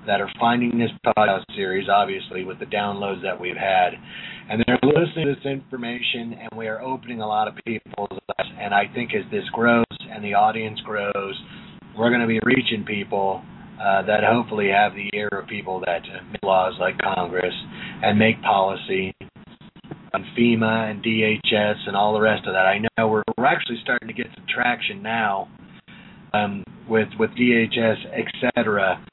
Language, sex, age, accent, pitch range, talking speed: English, male, 40-59, American, 105-125 Hz, 180 wpm